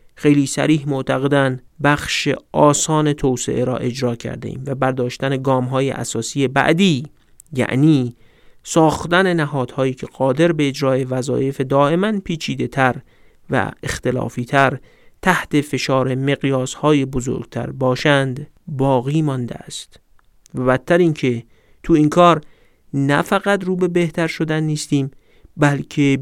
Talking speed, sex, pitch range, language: 115 wpm, male, 130-160 Hz, Persian